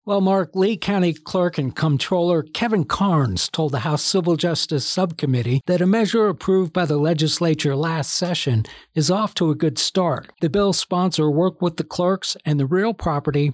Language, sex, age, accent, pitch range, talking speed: English, male, 60-79, American, 145-180 Hz, 180 wpm